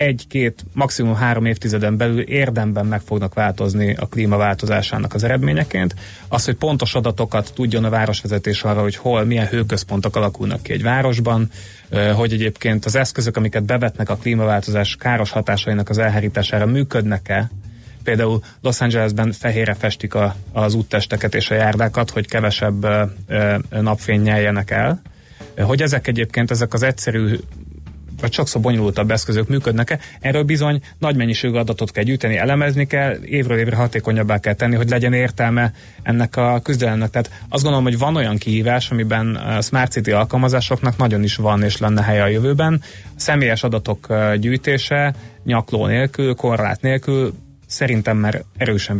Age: 30-49